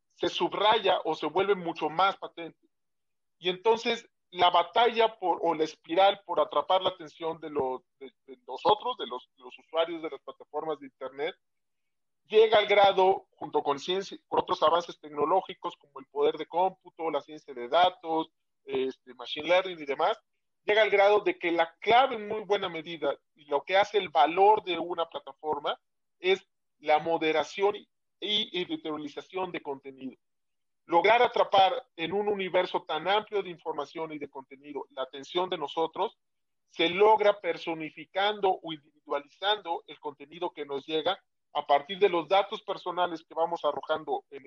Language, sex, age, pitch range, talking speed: Spanish, male, 40-59, 155-200 Hz, 165 wpm